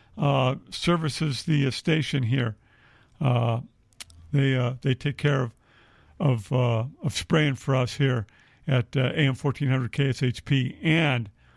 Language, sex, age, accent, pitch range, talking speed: English, male, 50-69, American, 120-160 Hz, 135 wpm